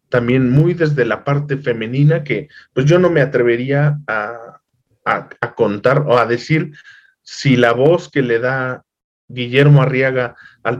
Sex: male